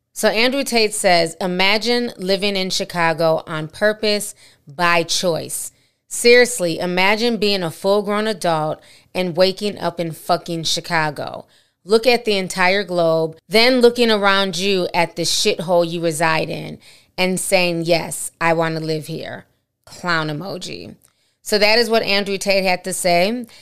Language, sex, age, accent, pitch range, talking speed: English, female, 20-39, American, 165-205 Hz, 150 wpm